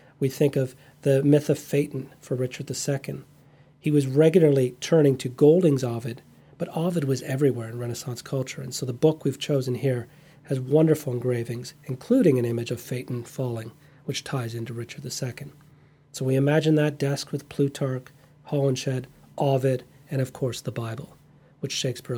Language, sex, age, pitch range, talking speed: English, male, 40-59, 125-150 Hz, 165 wpm